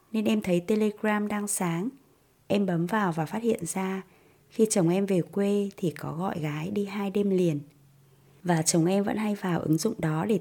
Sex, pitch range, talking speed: female, 160-210 Hz, 210 wpm